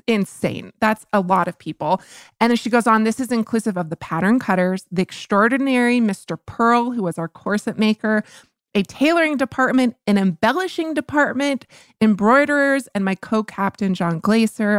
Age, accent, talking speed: 20-39, American, 160 wpm